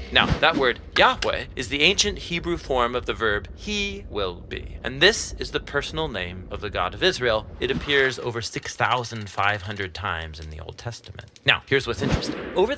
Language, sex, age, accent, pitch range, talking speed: English, male, 30-49, American, 105-150 Hz, 190 wpm